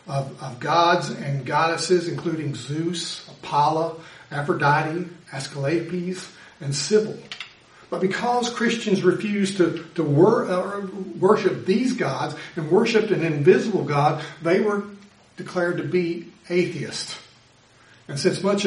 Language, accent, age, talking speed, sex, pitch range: English, American, 60-79, 120 wpm, male, 150-185 Hz